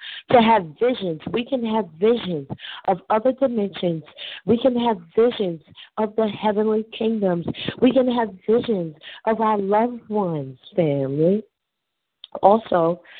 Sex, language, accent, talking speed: female, English, American, 125 wpm